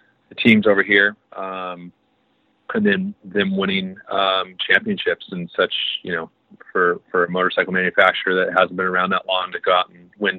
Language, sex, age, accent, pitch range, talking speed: English, male, 30-49, American, 90-100 Hz, 180 wpm